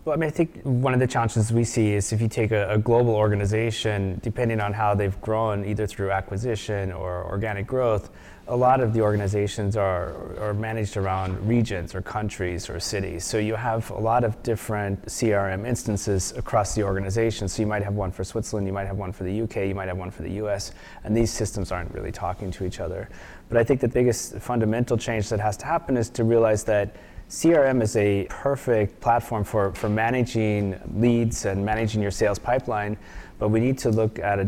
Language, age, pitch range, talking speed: English, 20-39, 100-115 Hz, 210 wpm